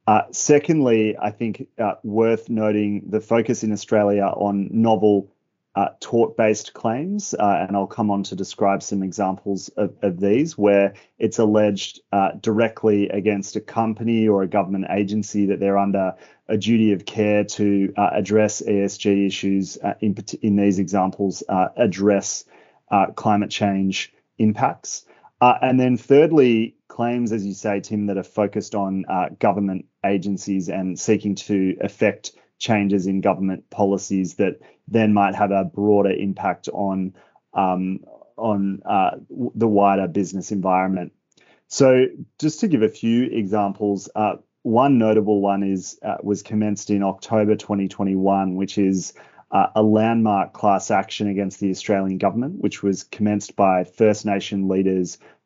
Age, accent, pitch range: 30-49, Australian, 95-110 Hz